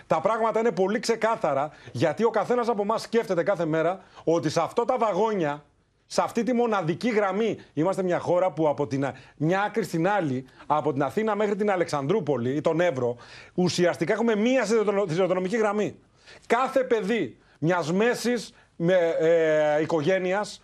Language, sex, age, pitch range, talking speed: Greek, male, 40-59, 170-225 Hz, 155 wpm